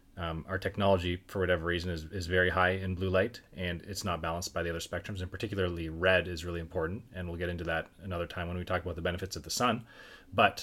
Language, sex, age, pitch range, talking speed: English, male, 30-49, 85-95 Hz, 250 wpm